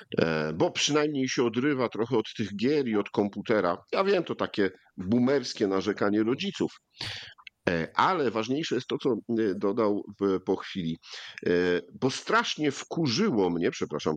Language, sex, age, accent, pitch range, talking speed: Polish, male, 50-69, native, 115-155 Hz, 130 wpm